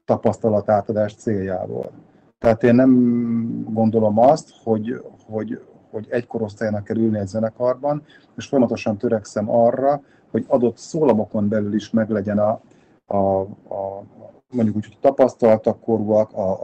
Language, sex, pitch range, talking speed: Hungarian, male, 105-120 Hz, 125 wpm